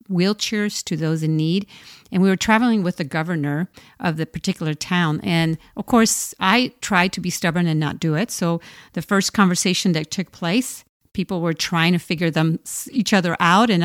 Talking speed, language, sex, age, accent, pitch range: 195 wpm, English, female, 50-69, American, 170-220 Hz